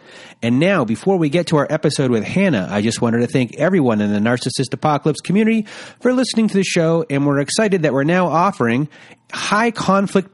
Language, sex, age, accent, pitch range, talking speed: English, male, 30-49, American, 115-170 Hz, 195 wpm